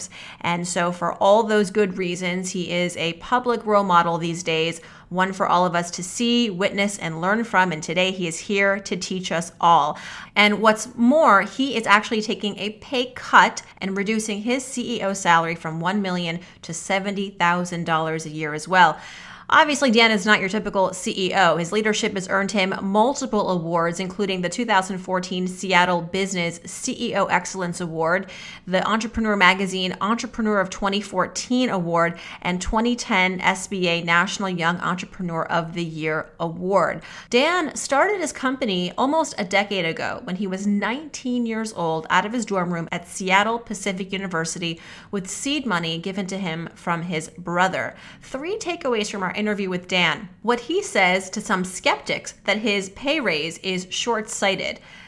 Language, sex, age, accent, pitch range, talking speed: English, female, 30-49, American, 175-215 Hz, 160 wpm